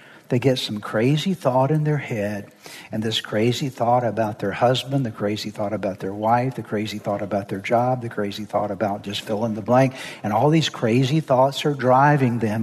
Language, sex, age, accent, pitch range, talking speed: English, male, 60-79, American, 110-145 Hz, 210 wpm